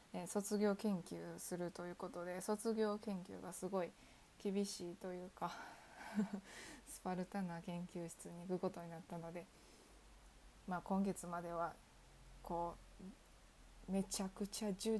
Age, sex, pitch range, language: 20-39, female, 170-210 Hz, Japanese